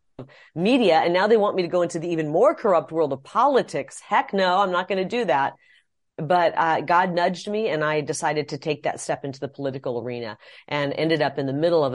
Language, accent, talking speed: English, American, 235 wpm